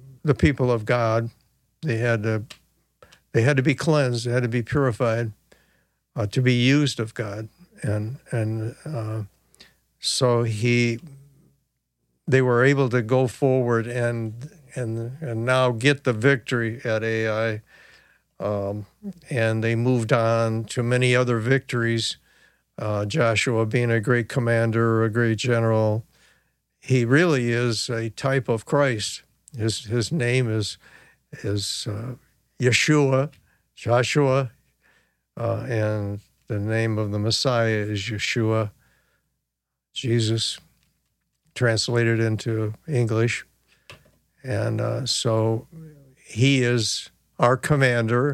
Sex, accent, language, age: male, American, English, 60-79